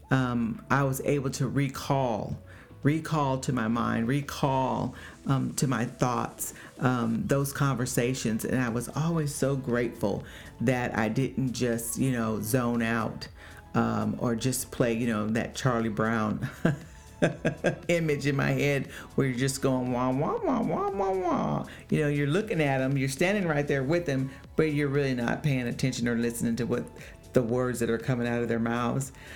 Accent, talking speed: American, 175 wpm